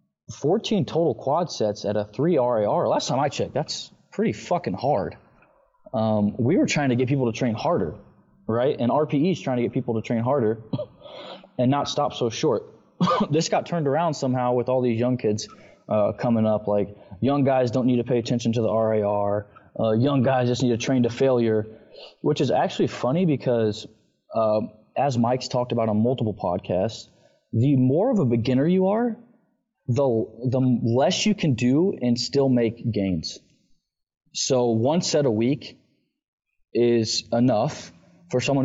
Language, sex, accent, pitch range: English, male, American, 110-140 Hz